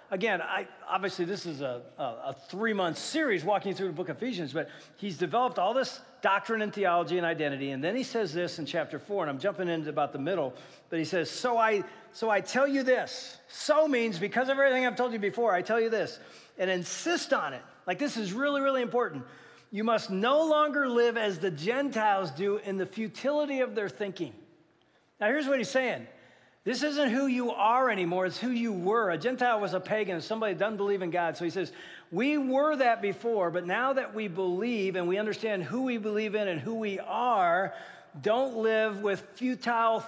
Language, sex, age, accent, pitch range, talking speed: English, male, 40-59, American, 185-245 Hz, 210 wpm